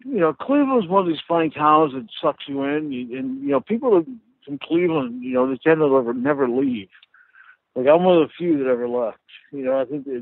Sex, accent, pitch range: male, American, 130-170 Hz